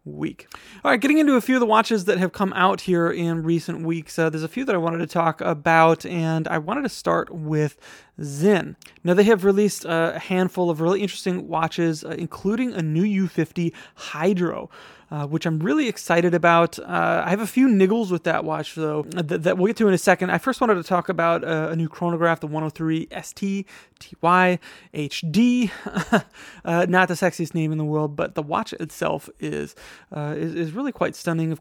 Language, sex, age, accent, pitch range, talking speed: English, male, 30-49, American, 155-190 Hz, 205 wpm